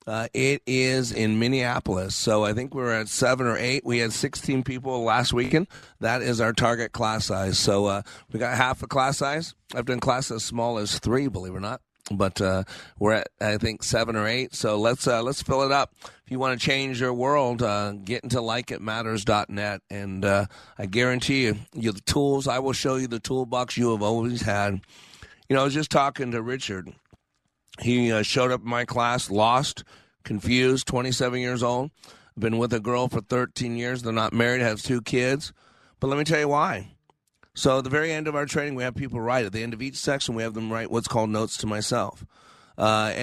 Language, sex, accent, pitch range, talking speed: English, male, American, 110-130 Hz, 215 wpm